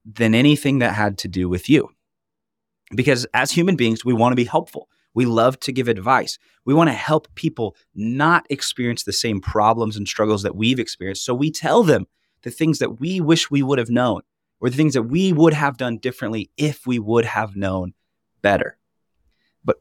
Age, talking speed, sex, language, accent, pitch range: 30-49, 200 wpm, male, English, American, 100-130 Hz